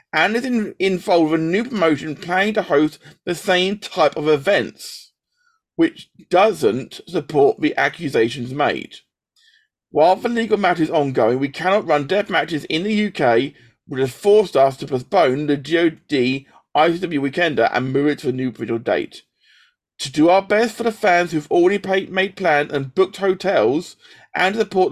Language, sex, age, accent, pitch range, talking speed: English, male, 40-59, British, 130-190 Hz, 170 wpm